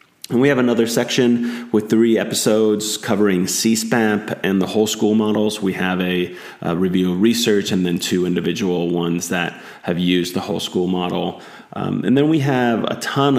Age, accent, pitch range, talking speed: 30-49, American, 90-110 Hz, 185 wpm